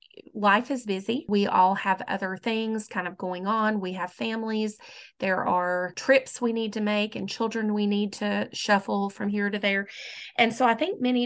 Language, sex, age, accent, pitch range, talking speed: English, female, 30-49, American, 195-220 Hz, 195 wpm